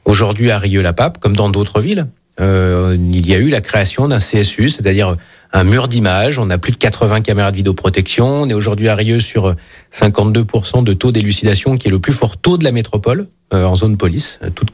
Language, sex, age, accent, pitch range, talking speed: French, male, 40-59, French, 100-120 Hz, 210 wpm